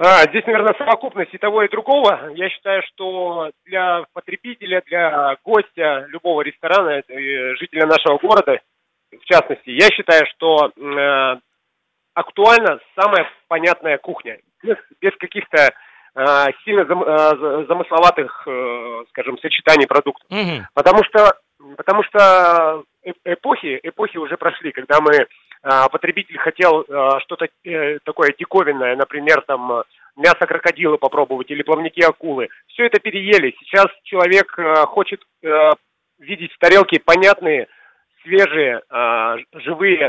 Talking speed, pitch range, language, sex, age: 115 wpm, 150-195 Hz, Russian, male, 30-49